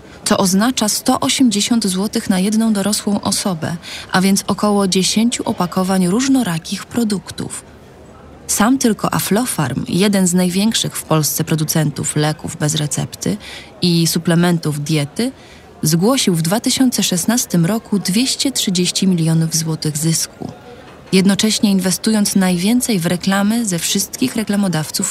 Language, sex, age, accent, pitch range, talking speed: Polish, female, 20-39, native, 170-215 Hz, 110 wpm